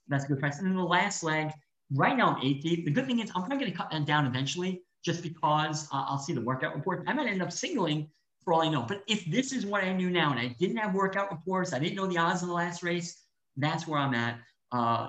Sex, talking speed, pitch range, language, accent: male, 280 wpm, 130-175 Hz, English, American